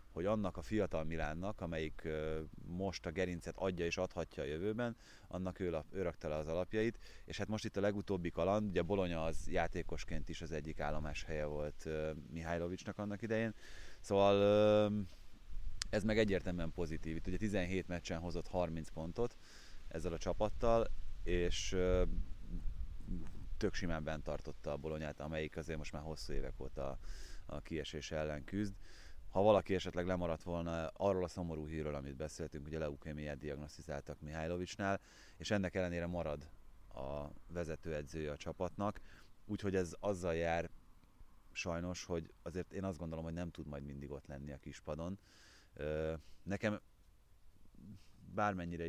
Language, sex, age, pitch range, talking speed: Hungarian, male, 30-49, 80-95 Hz, 140 wpm